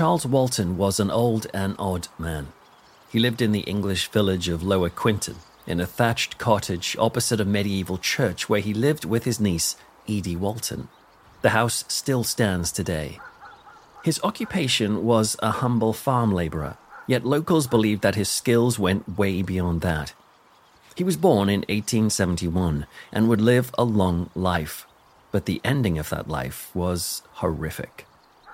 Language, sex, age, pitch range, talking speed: English, male, 40-59, 90-115 Hz, 155 wpm